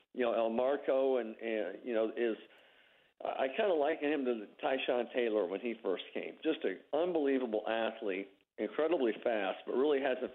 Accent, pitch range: American, 110-130 Hz